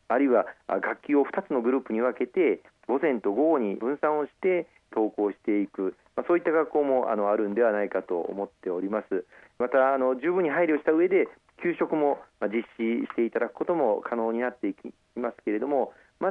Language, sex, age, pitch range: Japanese, male, 40-59, 105-145 Hz